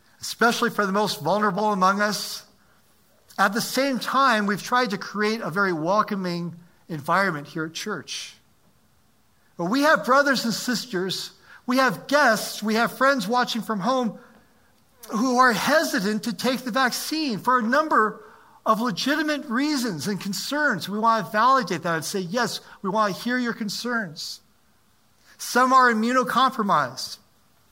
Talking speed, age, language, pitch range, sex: 150 wpm, 50-69, English, 190-245 Hz, male